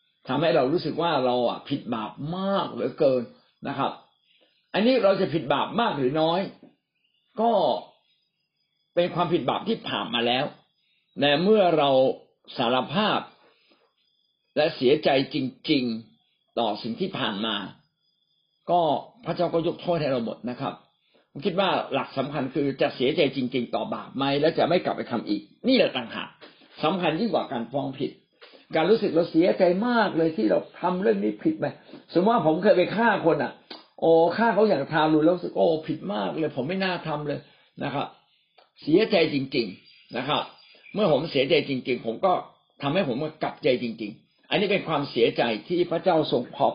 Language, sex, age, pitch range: Thai, male, 60-79, 135-175 Hz